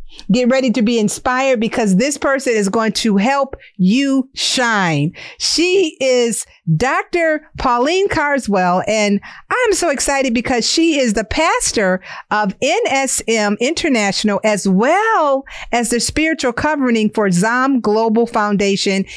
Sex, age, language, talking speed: female, 50-69, English, 130 wpm